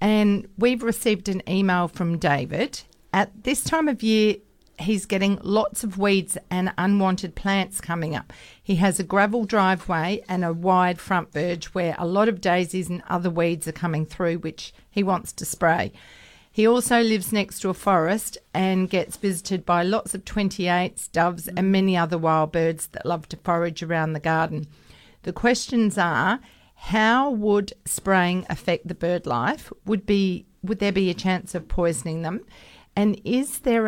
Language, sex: English, female